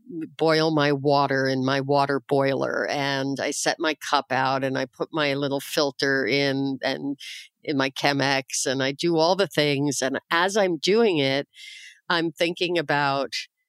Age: 50-69